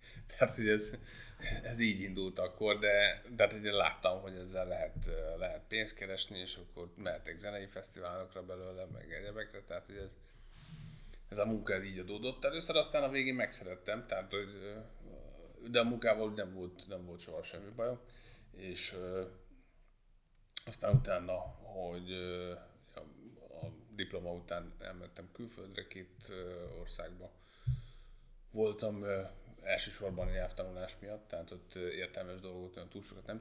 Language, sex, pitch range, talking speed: Hungarian, male, 90-110 Hz, 135 wpm